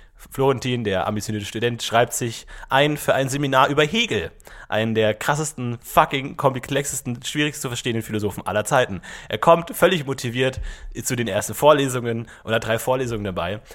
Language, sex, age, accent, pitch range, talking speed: German, male, 30-49, German, 115-160 Hz, 155 wpm